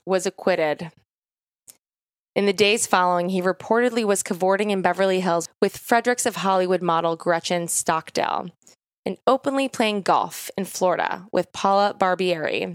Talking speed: 135 wpm